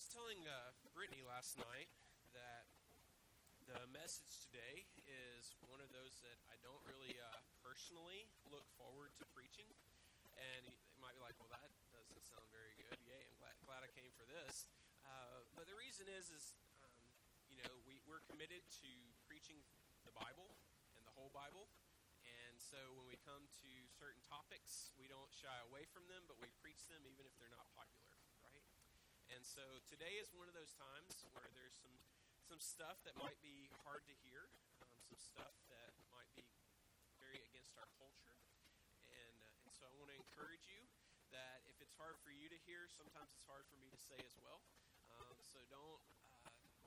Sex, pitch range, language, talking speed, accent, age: male, 120-145 Hz, English, 185 wpm, American, 30-49